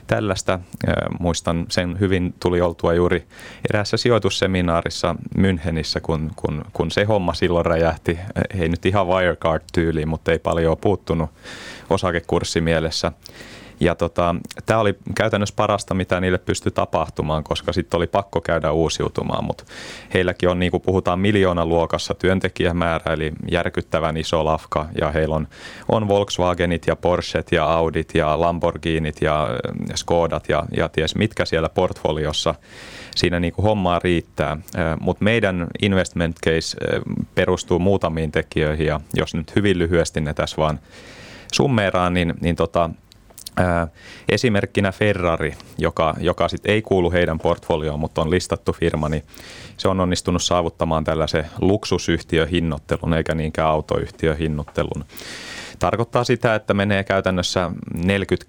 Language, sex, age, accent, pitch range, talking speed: Finnish, male, 30-49, native, 80-95 Hz, 130 wpm